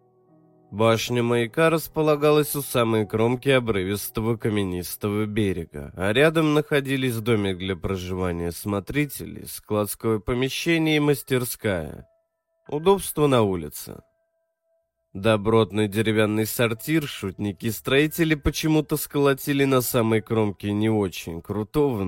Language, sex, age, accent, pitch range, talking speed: Russian, male, 20-39, native, 105-150 Hz, 95 wpm